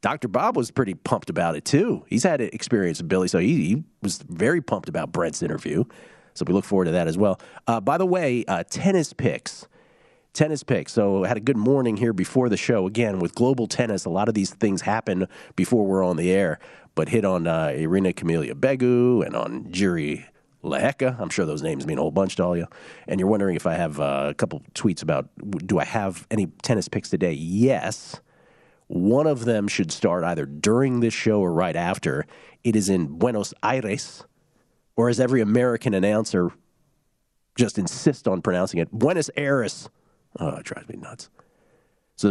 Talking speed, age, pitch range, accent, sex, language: 200 wpm, 40-59, 95-125 Hz, American, male, English